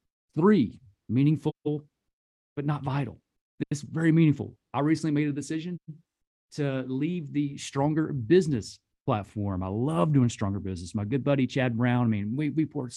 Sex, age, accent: male, 40-59, American